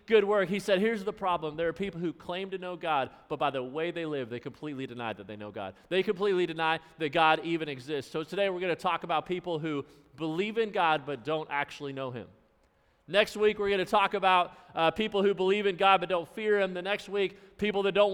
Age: 40-59